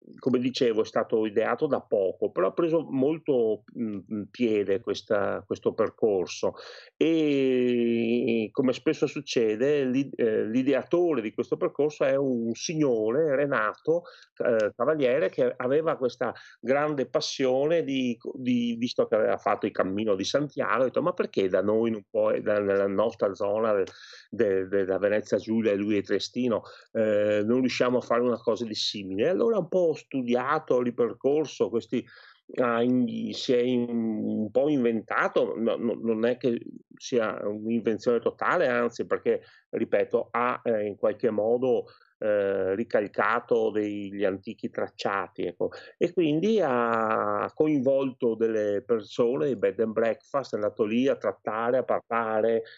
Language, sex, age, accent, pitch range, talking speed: Italian, male, 40-59, native, 110-180 Hz, 140 wpm